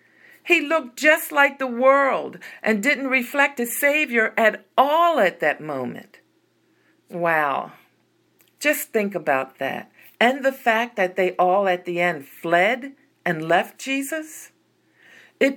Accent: American